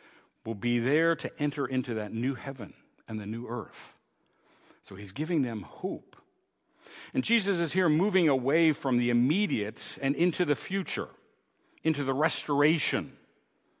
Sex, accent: male, American